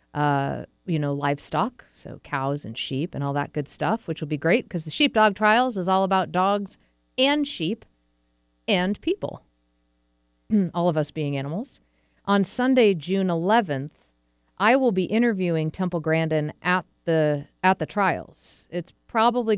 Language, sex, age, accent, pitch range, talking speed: English, female, 40-59, American, 140-165 Hz, 155 wpm